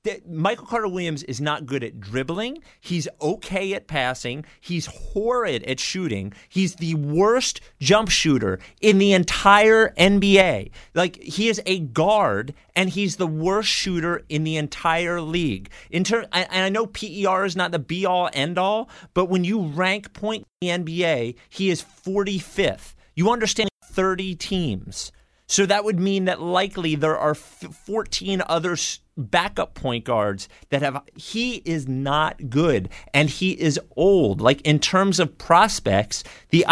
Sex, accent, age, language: male, American, 30-49, English